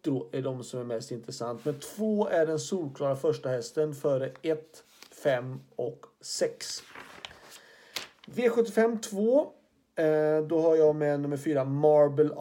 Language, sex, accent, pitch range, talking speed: Swedish, male, native, 130-165 Hz, 135 wpm